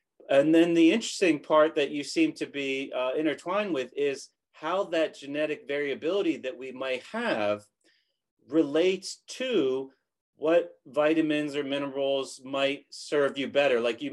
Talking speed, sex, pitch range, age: 145 wpm, male, 140-175 Hz, 30-49